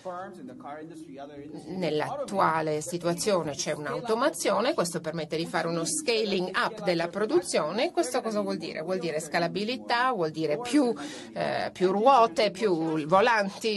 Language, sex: Italian, female